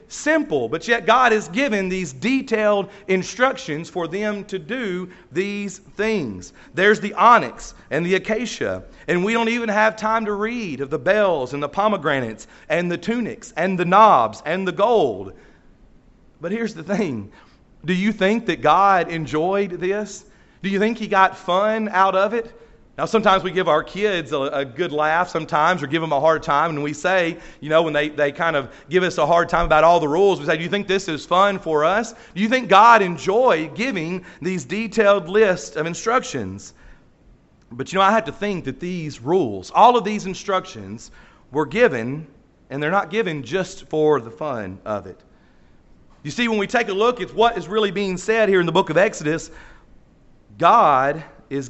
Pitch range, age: 155-210 Hz, 40-59